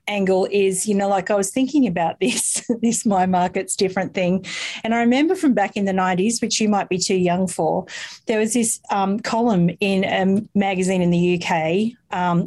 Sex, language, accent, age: female, English, Australian, 40-59